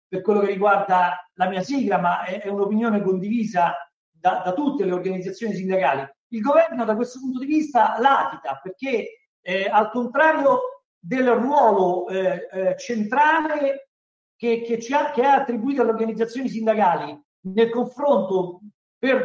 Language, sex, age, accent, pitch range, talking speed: Italian, male, 50-69, native, 200-265 Hz, 140 wpm